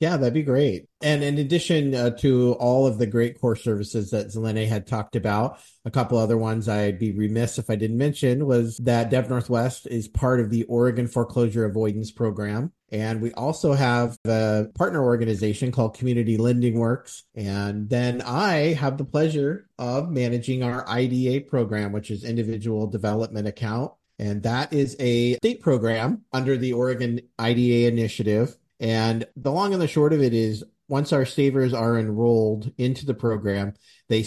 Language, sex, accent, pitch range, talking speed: English, male, American, 110-130 Hz, 175 wpm